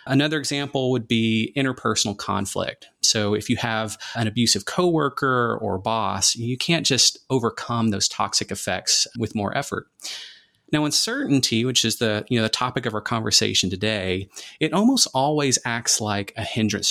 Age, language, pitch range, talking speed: 30-49, English, 105-135 Hz, 155 wpm